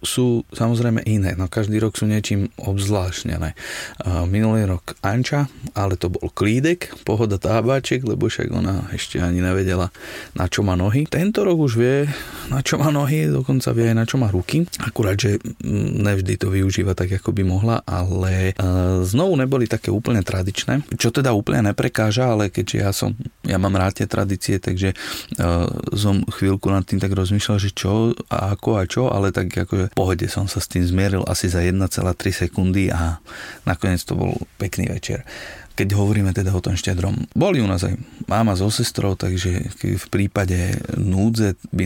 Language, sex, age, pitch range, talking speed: Slovak, male, 30-49, 95-115 Hz, 170 wpm